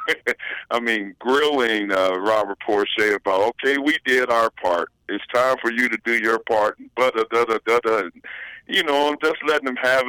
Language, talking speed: English, 165 wpm